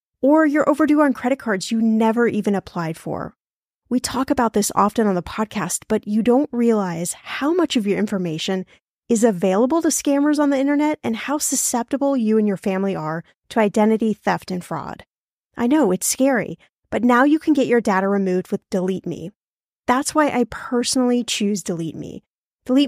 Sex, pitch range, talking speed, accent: female, 195-270 Hz, 180 wpm, American